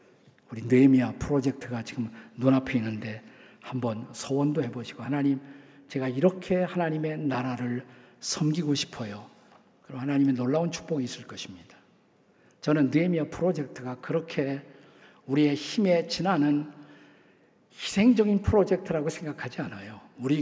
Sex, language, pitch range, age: male, Korean, 130-185 Hz, 50-69